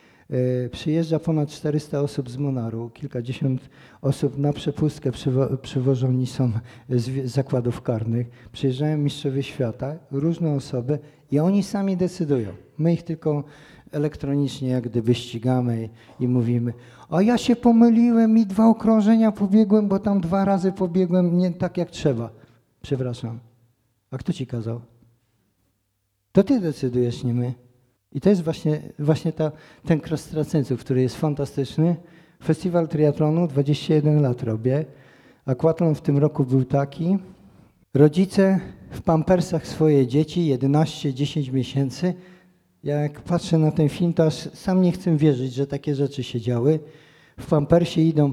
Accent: native